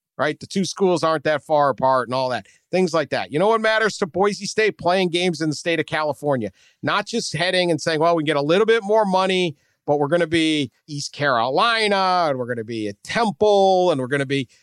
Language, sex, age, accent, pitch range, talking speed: English, male, 50-69, American, 125-175 Hz, 235 wpm